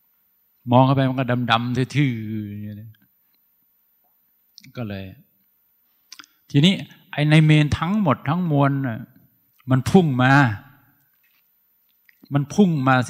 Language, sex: Thai, male